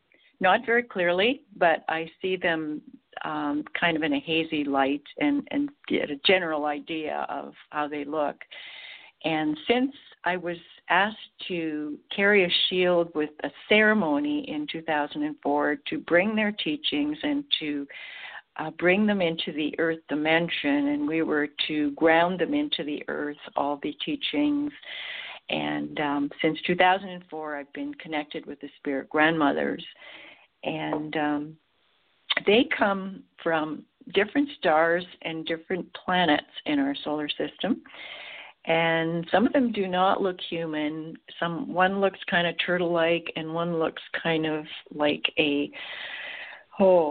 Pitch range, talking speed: 155-195 Hz, 140 wpm